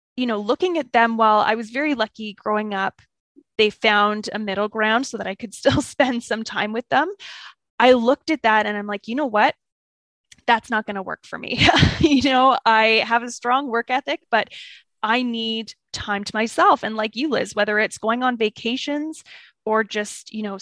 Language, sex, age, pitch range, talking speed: English, female, 20-39, 215-260 Hz, 205 wpm